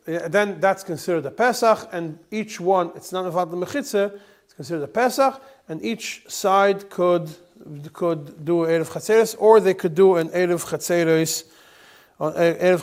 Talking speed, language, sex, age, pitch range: 130 wpm, English, male, 40-59, 160-200 Hz